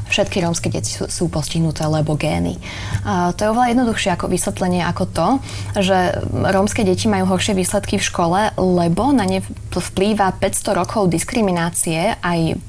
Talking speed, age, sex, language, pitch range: 150 wpm, 20-39, female, Slovak, 165-190 Hz